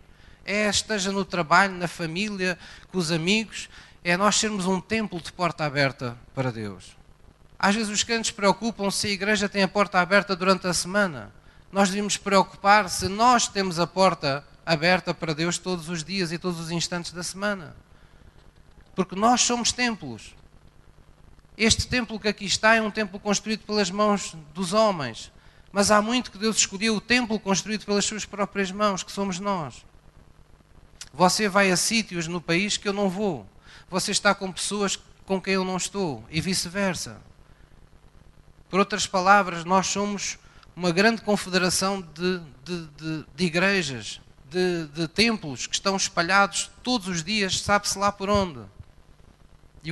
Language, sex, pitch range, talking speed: Portuguese, male, 150-200 Hz, 160 wpm